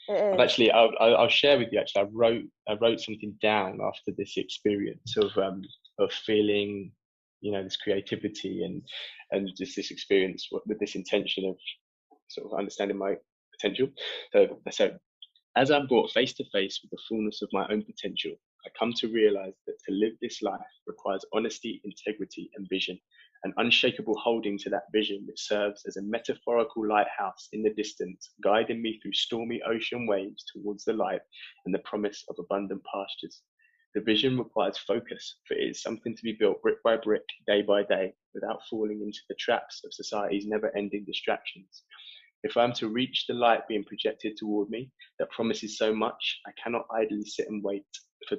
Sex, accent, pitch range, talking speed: male, British, 100-120 Hz, 180 wpm